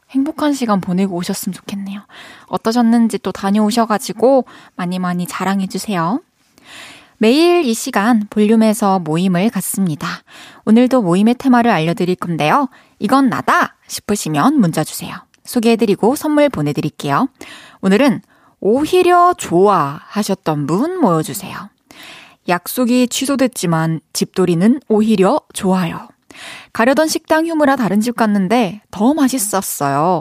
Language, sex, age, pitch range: Korean, female, 20-39, 185-265 Hz